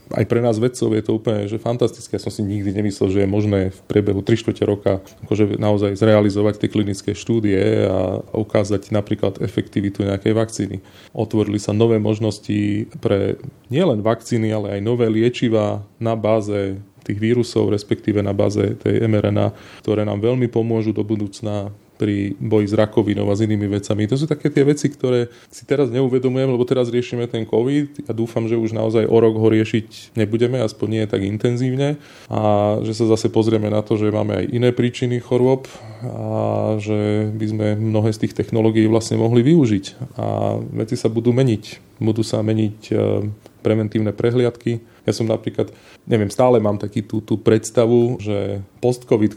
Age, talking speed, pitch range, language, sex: 20-39, 170 wpm, 105-115 Hz, Slovak, male